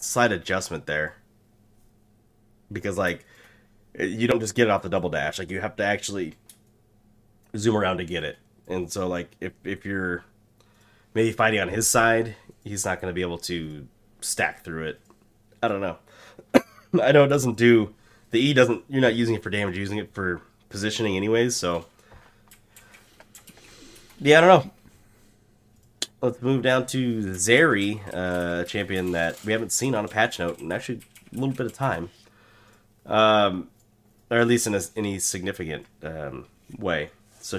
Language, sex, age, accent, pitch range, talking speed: English, male, 30-49, American, 95-115 Hz, 170 wpm